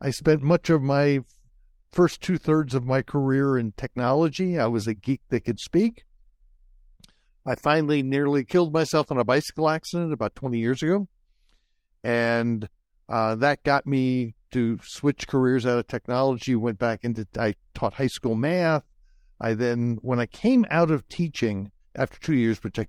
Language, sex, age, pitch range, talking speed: English, male, 60-79, 115-145 Hz, 170 wpm